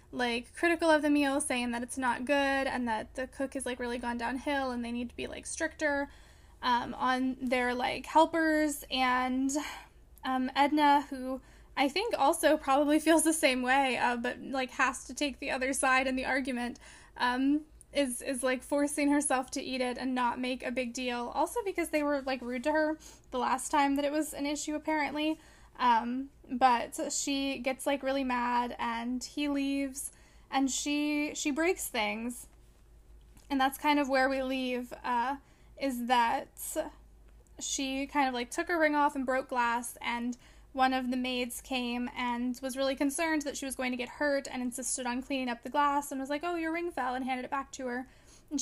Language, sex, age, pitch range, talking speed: English, female, 20-39, 255-295 Hz, 200 wpm